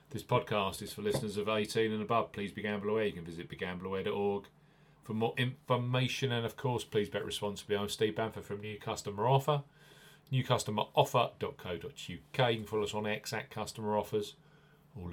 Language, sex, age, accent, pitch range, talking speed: English, male, 40-59, British, 105-135 Hz, 165 wpm